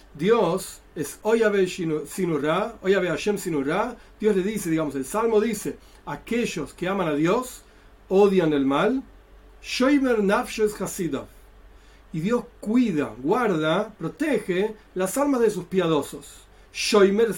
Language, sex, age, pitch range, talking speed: Spanish, male, 40-59, 170-230 Hz, 115 wpm